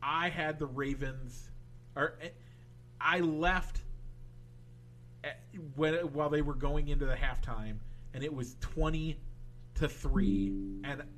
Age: 40-59